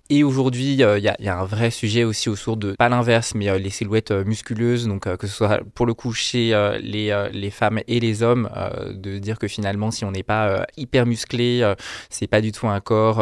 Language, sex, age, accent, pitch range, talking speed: French, male, 20-39, French, 100-115 Hz, 260 wpm